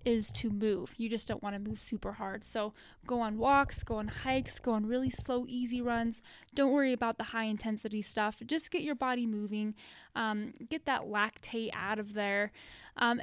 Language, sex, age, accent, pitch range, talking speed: English, female, 10-29, American, 215-255 Hz, 200 wpm